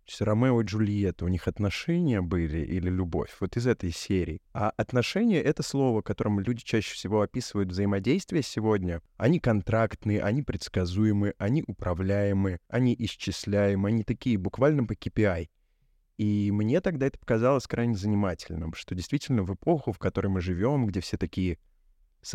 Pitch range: 95-115 Hz